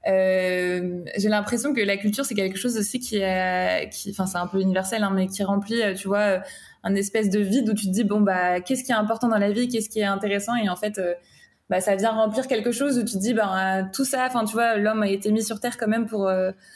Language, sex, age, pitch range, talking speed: French, female, 20-39, 195-230 Hz, 275 wpm